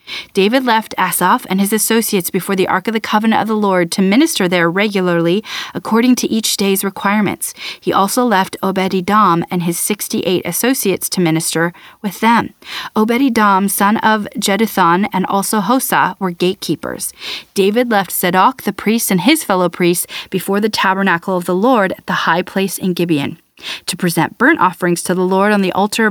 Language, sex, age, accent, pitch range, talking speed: English, female, 30-49, American, 185-225 Hz, 175 wpm